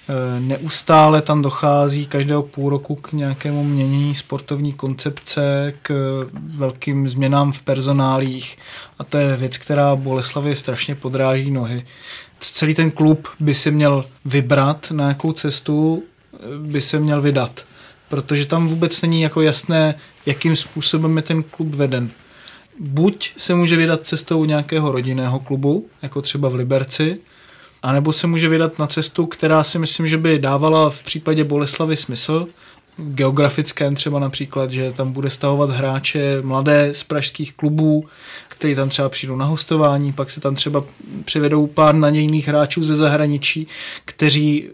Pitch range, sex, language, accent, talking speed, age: 140-155 Hz, male, Czech, native, 150 wpm, 20-39